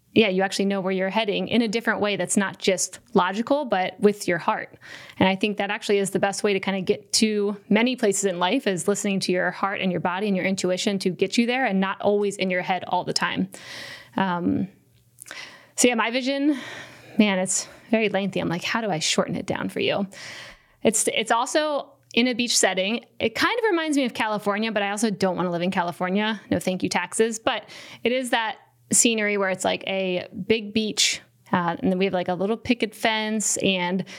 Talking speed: 225 wpm